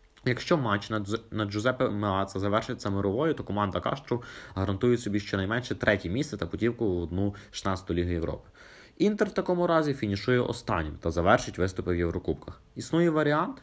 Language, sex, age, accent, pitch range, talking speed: Ukrainian, male, 20-39, native, 90-125 Hz, 155 wpm